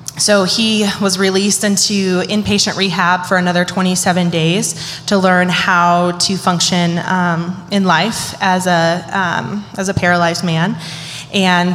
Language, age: English, 20-39